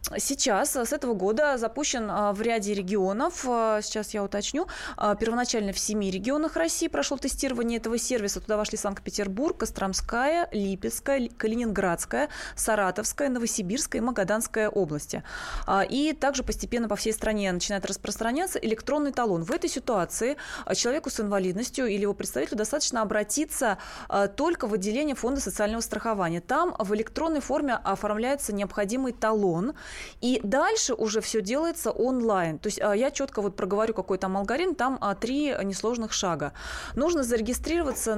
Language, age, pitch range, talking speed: Russian, 20-39, 205-260 Hz, 135 wpm